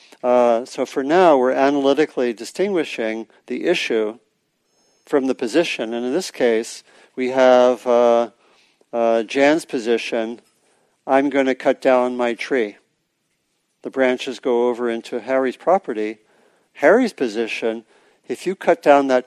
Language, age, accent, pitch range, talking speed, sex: English, 50-69, American, 115-135 Hz, 135 wpm, male